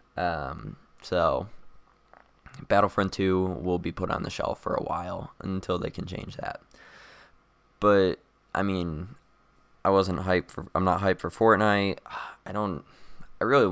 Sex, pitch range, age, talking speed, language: male, 85-95 Hz, 20-39, 150 wpm, English